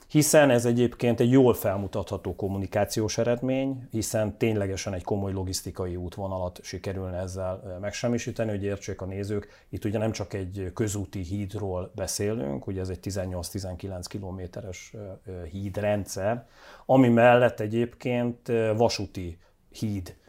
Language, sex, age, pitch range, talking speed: Hungarian, male, 40-59, 95-115 Hz, 120 wpm